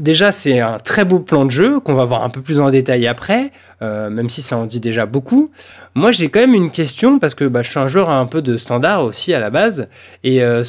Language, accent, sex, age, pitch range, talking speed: French, French, male, 20-39, 120-165 Hz, 270 wpm